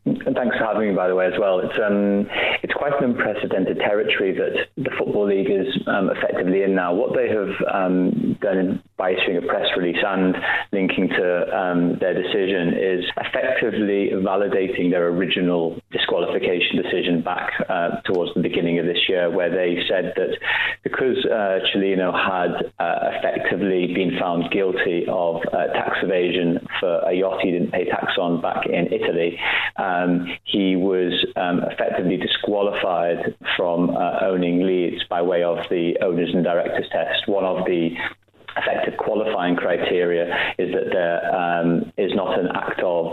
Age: 30-49